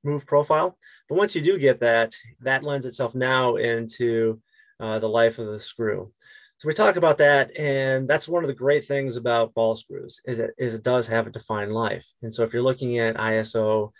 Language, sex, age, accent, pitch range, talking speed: English, male, 30-49, American, 110-135 Hz, 215 wpm